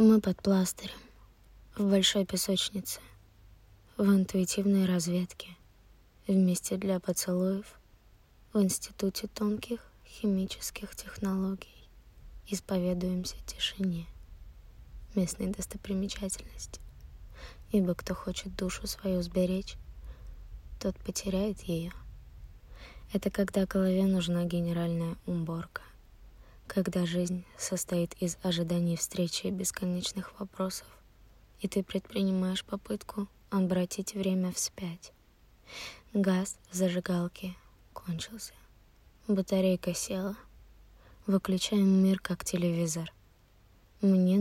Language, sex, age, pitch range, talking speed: Russian, female, 20-39, 165-195 Hz, 85 wpm